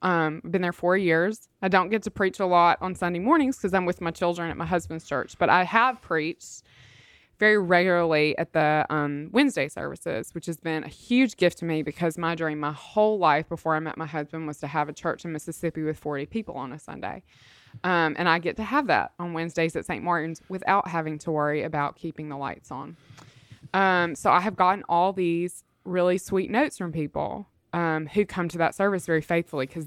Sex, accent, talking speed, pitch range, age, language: female, American, 220 wpm, 155-195 Hz, 20-39, English